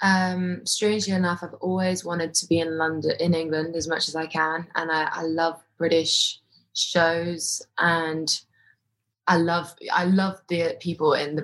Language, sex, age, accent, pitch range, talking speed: English, female, 20-39, British, 155-170 Hz, 170 wpm